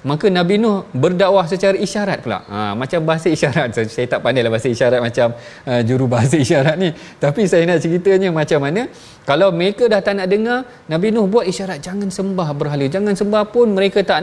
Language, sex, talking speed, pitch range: Malayalam, male, 200 wpm, 145-185 Hz